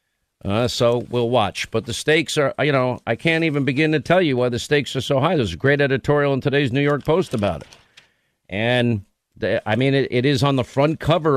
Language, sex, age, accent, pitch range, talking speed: English, male, 50-69, American, 120-150 Hz, 230 wpm